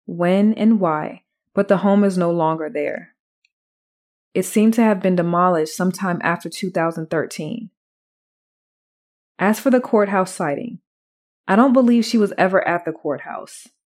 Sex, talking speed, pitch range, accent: female, 145 wpm, 185-235 Hz, American